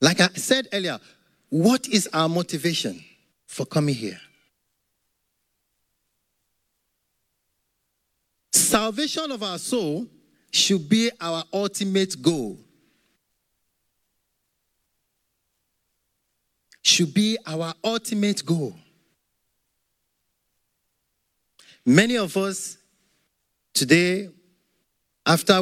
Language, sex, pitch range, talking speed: English, male, 165-225 Hz, 70 wpm